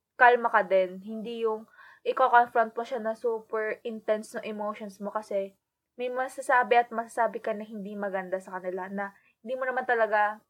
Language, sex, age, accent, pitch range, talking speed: Filipino, female, 20-39, native, 215-270 Hz, 185 wpm